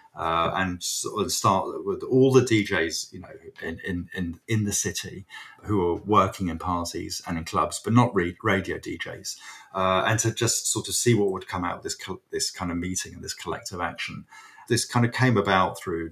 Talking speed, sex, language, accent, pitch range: 210 wpm, male, English, British, 90-115 Hz